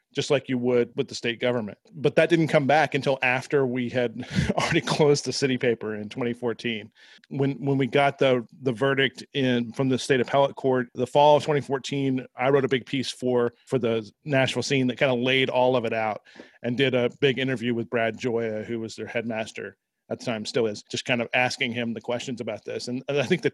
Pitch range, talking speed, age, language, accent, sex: 120-140 Hz, 225 wpm, 40-59, English, American, male